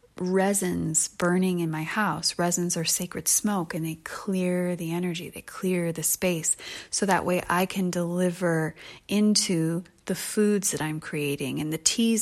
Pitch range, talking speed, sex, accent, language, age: 160-190 Hz, 160 wpm, female, American, English, 30-49